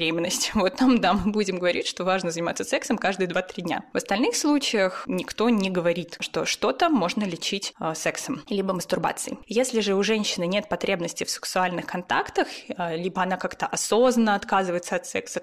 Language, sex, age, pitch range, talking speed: Russian, female, 20-39, 185-225 Hz, 170 wpm